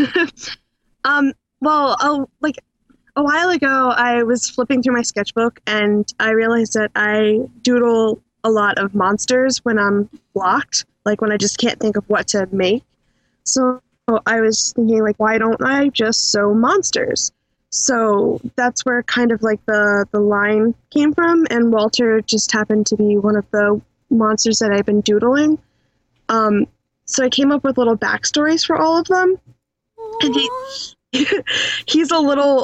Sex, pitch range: female, 215-255 Hz